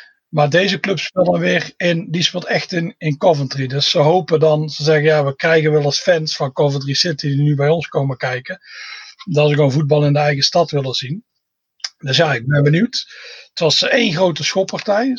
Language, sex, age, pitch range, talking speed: Dutch, male, 40-59, 150-185 Hz, 215 wpm